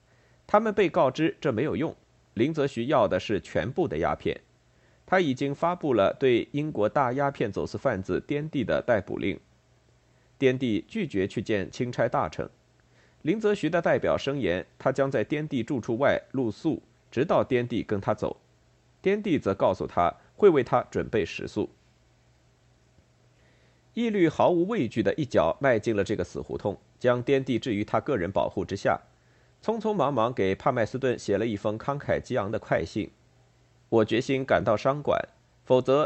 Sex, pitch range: male, 115-155 Hz